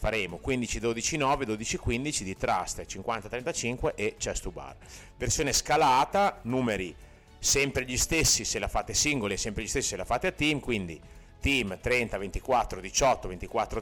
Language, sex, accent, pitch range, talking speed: Italian, male, native, 100-125 Hz, 170 wpm